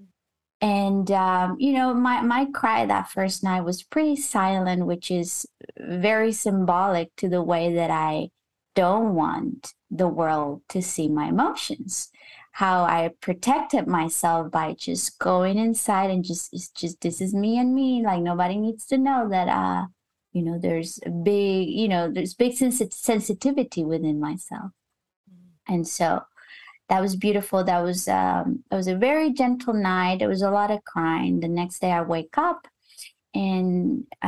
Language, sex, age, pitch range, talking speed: English, female, 20-39, 175-230 Hz, 165 wpm